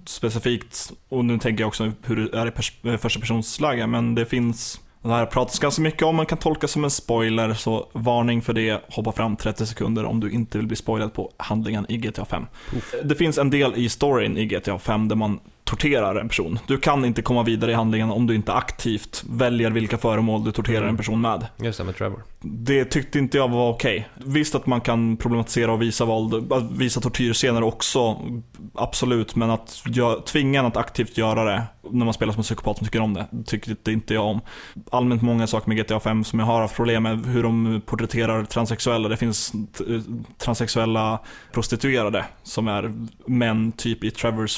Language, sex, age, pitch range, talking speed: Swedish, male, 20-39, 110-120 Hz, 205 wpm